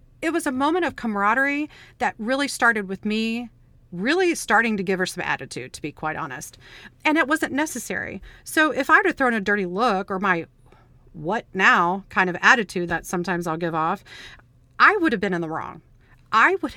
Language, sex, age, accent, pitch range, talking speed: English, female, 40-59, American, 170-235 Hz, 195 wpm